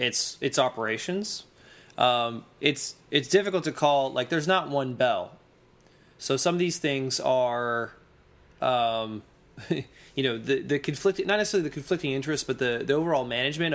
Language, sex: English, male